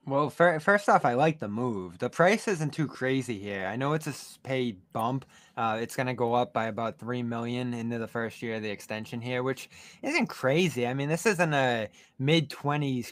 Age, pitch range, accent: 20-39, 105-130 Hz, American